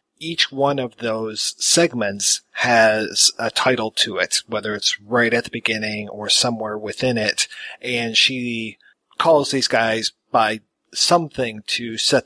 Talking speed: 140 wpm